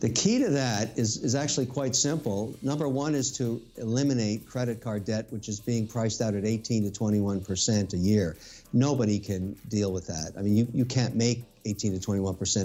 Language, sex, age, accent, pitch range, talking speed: English, male, 50-69, American, 105-130 Hz, 185 wpm